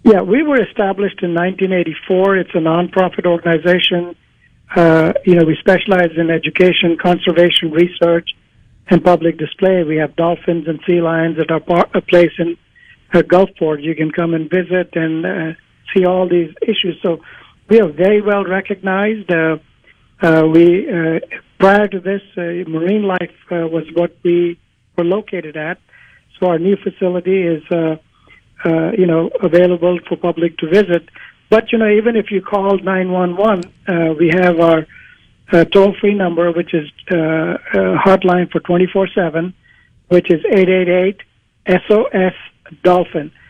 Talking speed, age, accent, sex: 150 wpm, 60-79, American, male